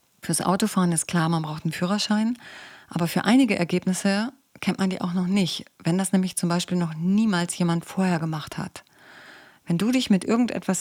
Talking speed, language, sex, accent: 190 wpm, German, female, German